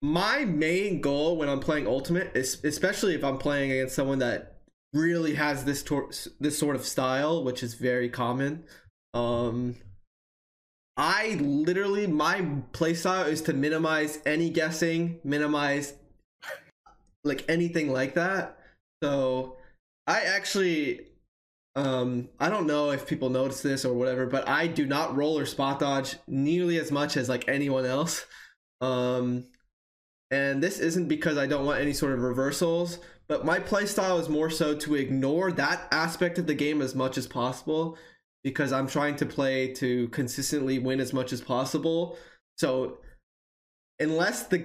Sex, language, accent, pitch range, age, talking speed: male, English, American, 130-160 Hz, 20-39, 155 wpm